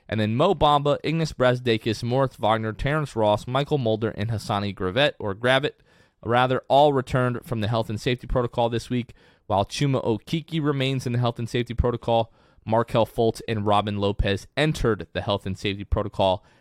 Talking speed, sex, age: 175 wpm, male, 20-39